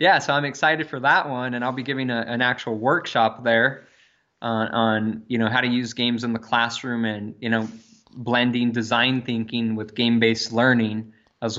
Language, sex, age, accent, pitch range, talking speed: English, male, 20-39, American, 115-135 Hz, 190 wpm